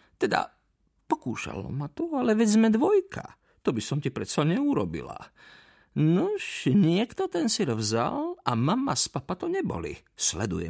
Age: 50-69